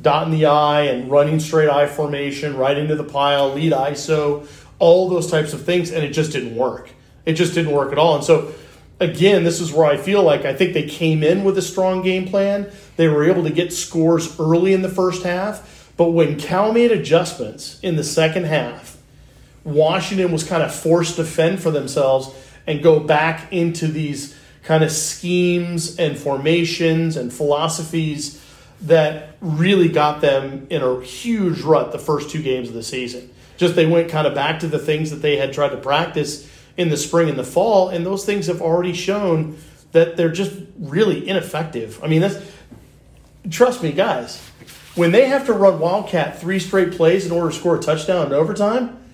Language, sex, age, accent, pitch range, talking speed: English, male, 40-59, American, 145-180 Hz, 195 wpm